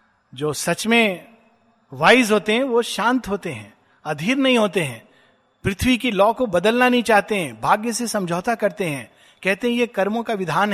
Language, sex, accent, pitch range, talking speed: Hindi, male, native, 155-215 Hz, 185 wpm